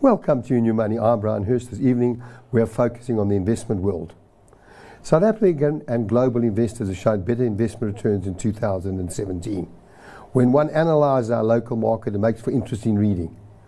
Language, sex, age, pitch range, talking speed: English, male, 60-79, 115-145 Hz, 175 wpm